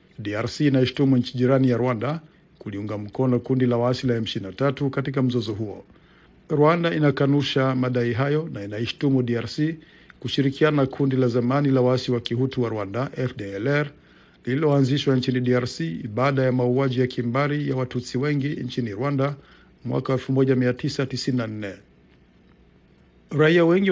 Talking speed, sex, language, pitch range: 125 wpm, male, Swahili, 120-145 Hz